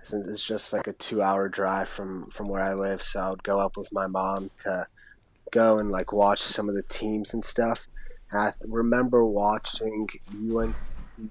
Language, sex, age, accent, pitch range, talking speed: English, male, 20-39, American, 100-105 Hz, 185 wpm